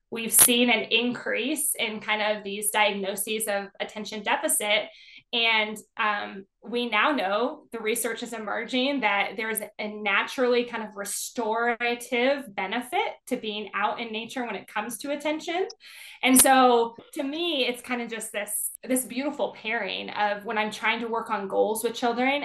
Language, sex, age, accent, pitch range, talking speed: English, female, 20-39, American, 210-255 Hz, 165 wpm